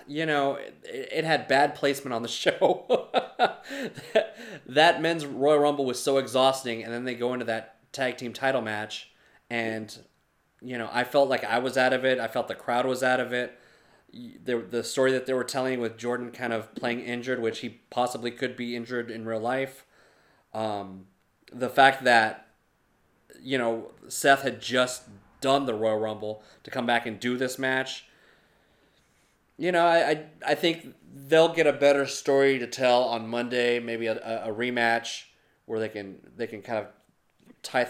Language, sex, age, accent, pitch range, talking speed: English, male, 20-39, American, 115-135 Hz, 185 wpm